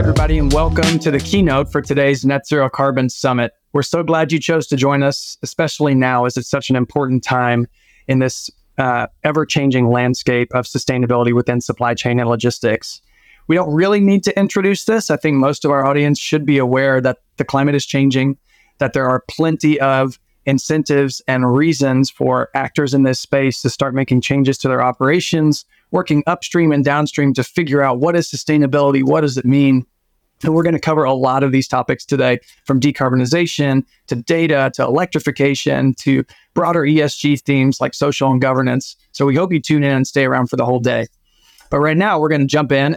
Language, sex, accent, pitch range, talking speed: English, male, American, 130-150 Hz, 195 wpm